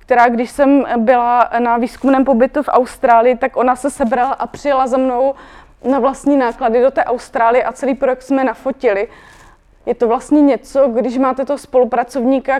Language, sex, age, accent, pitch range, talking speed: Czech, female, 20-39, native, 240-270 Hz, 175 wpm